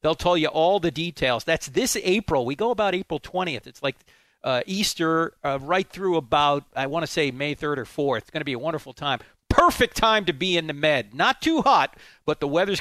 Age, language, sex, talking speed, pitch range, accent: 40-59, English, male, 235 wpm, 135-165 Hz, American